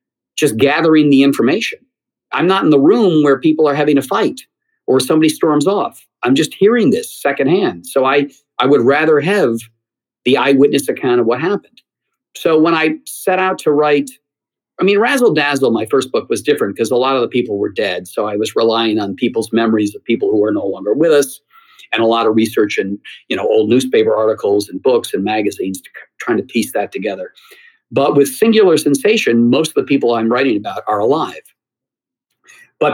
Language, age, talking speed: English, 50-69, 195 wpm